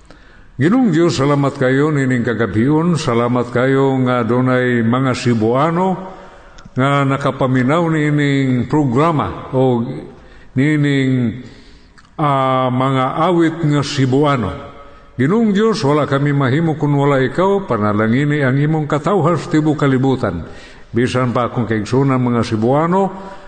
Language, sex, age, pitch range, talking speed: Filipino, male, 50-69, 120-150 Hz, 110 wpm